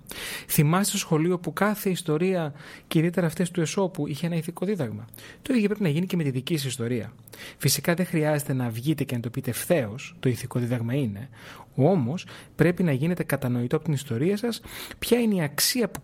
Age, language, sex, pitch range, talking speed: 30-49, Greek, male, 130-180 Hz, 200 wpm